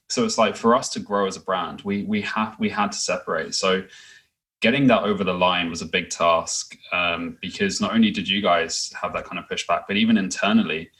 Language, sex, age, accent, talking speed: English, male, 20-39, British, 230 wpm